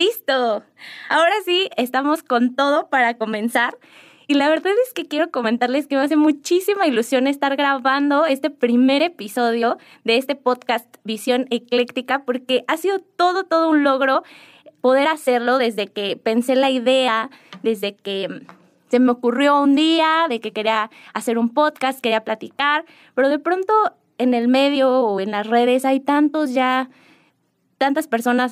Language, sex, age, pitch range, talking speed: Spanish, female, 20-39, 225-285 Hz, 155 wpm